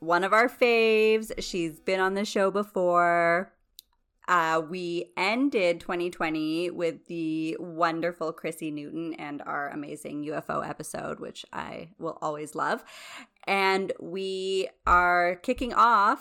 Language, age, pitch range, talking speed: English, 30-49, 160-195 Hz, 125 wpm